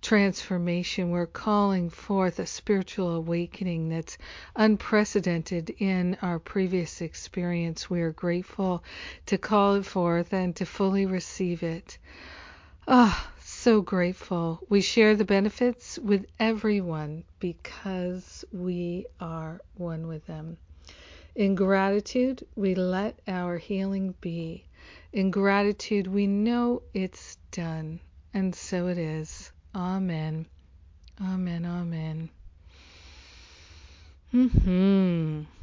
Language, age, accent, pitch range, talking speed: English, 50-69, American, 175-205 Hz, 105 wpm